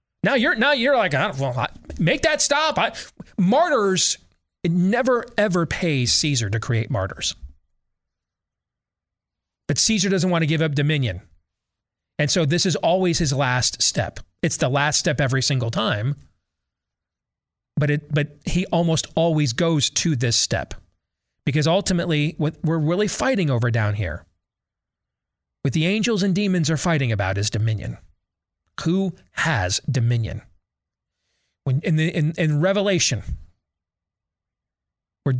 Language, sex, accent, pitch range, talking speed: English, male, American, 110-170 Hz, 140 wpm